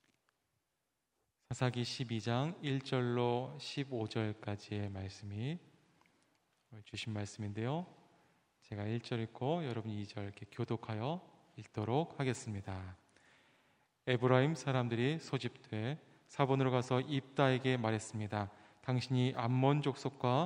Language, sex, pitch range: Korean, male, 110-135 Hz